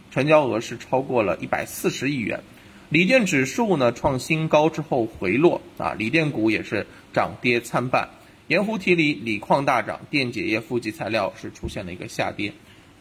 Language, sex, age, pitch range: Chinese, male, 20-39, 115-185 Hz